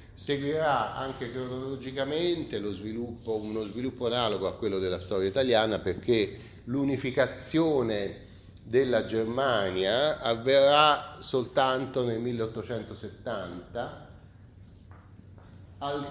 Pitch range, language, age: 95-130 Hz, Italian, 40-59